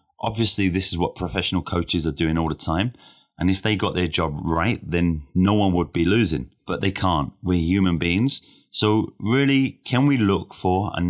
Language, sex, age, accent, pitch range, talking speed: English, male, 30-49, British, 85-105 Hz, 200 wpm